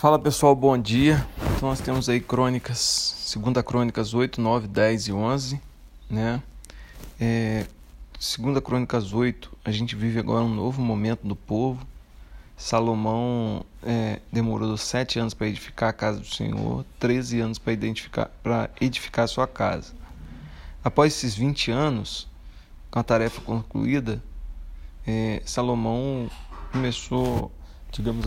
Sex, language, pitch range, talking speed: male, Portuguese, 100-130 Hz, 125 wpm